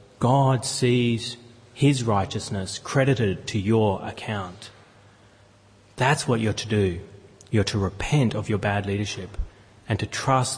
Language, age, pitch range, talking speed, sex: English, 30-49, 100-130 Hz, 130 wpm, male